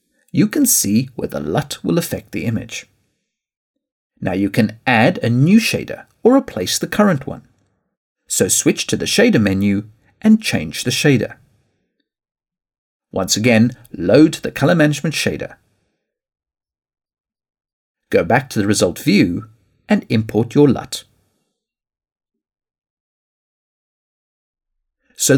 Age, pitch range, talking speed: 50-69, 110-175 Hz, 120 wpm